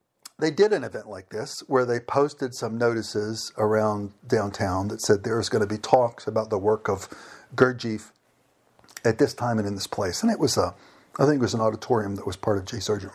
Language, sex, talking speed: English, male, 225 wpm